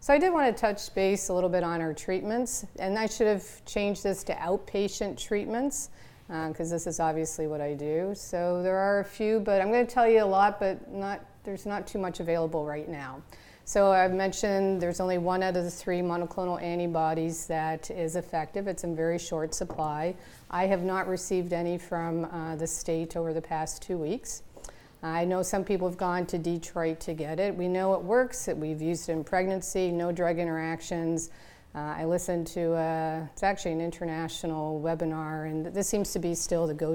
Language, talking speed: English, 205 wpm